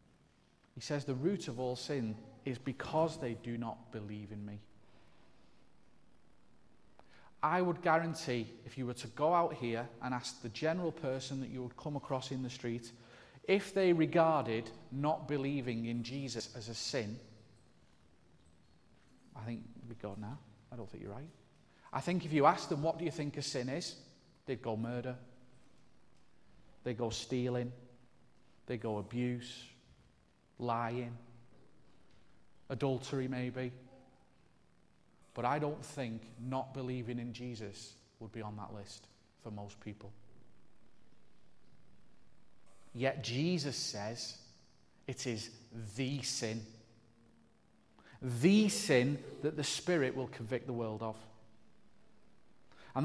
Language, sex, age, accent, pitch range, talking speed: English, male, 40-59, British, 115-145 Hz, 130 wpm